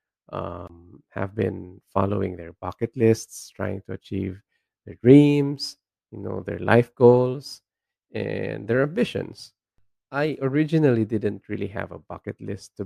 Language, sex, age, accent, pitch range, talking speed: English, male, 20-39, Filipino, 100-115 Hz, 135 wpm